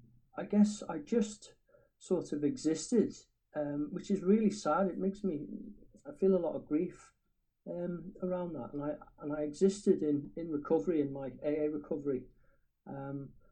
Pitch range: 140-175 Hz